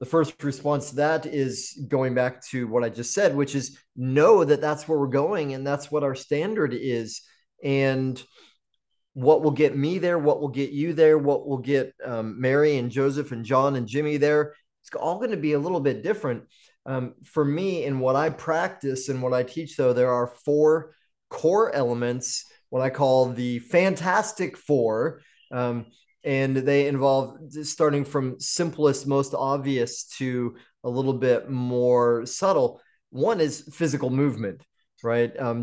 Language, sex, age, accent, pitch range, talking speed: English, male, 30-49, American, 125-150 Hz, 175 wpm